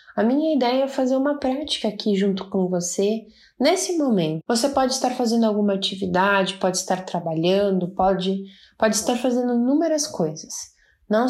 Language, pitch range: Portuguese, 175-245 Hz